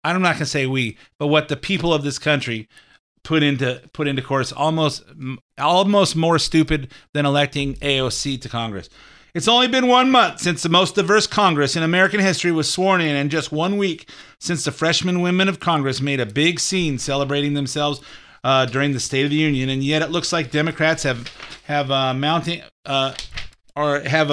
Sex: male